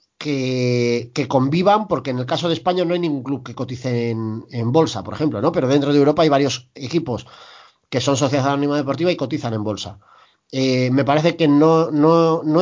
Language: Spanish